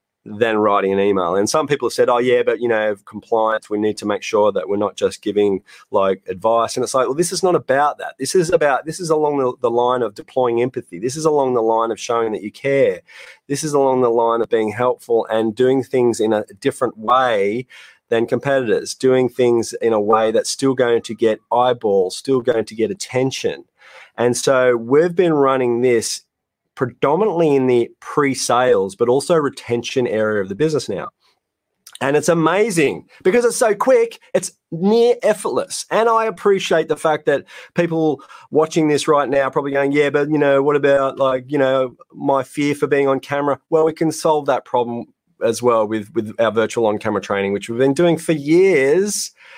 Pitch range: 120-155 Hz